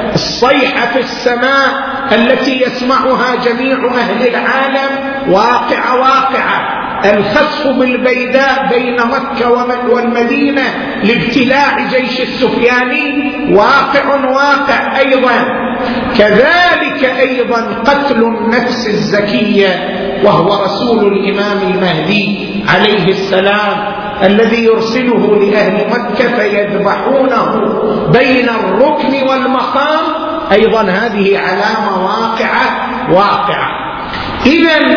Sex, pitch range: male, 210-265 Hz